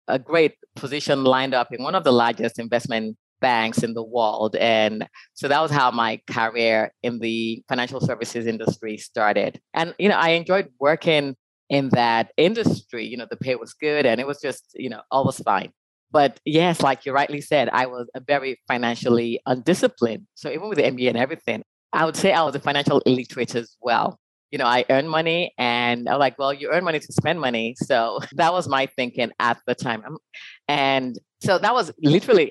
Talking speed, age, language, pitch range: 200 wpm, 30-49, English, 120-160 Hz